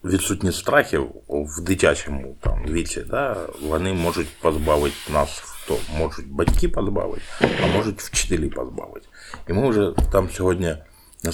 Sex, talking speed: male, 140 wpm